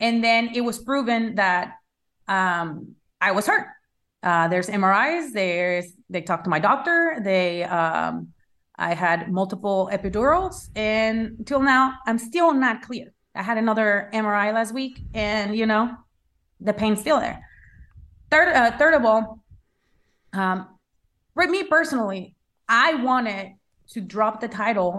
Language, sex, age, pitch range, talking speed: English, female, 30-49, 180-235 Hz, 145 wpm